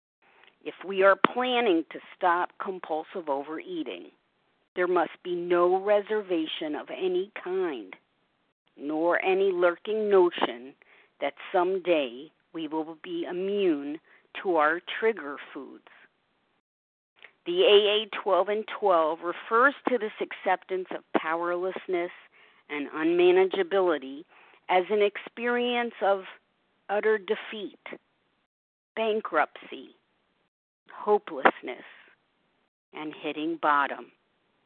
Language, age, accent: English, 50-69, American